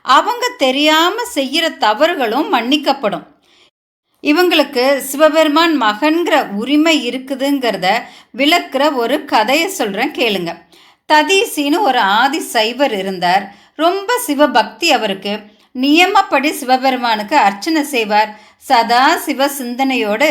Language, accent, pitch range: Tamil, native, 230-310 Hz